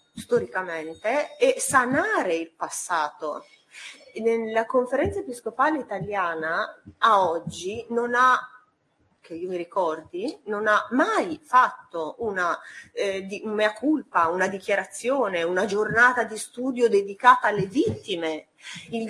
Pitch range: 190-250 Hz